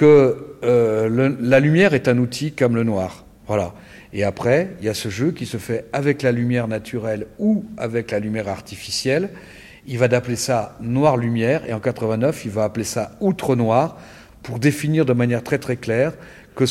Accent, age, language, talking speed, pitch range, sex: French, 50-69, French, 185 wpm, 115-145 Hz, male